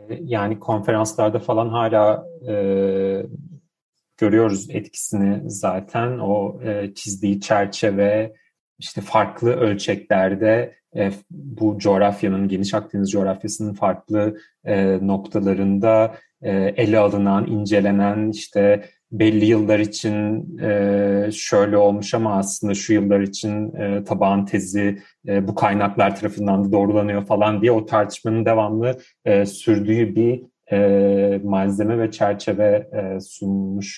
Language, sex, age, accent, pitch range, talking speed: Turkish, male, 40-59, native, 100-120 Hz, 95 wpm